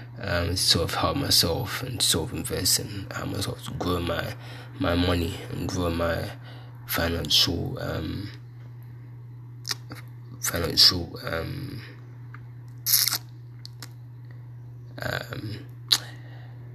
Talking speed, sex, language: 90 wpm, male, English